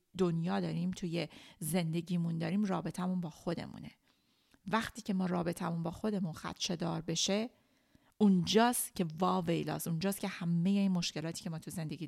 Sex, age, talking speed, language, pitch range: female, 40-59, 140 wpm, Persian, 170-205 Hz